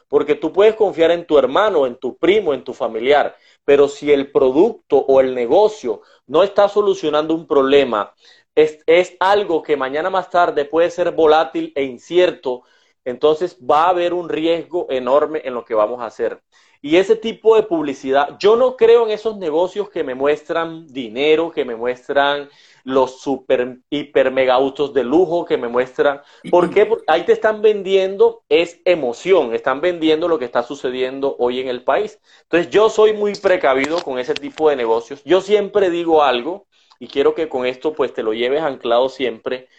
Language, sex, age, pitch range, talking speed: English, male, 30-49, 140-195 Hz, 180 wpm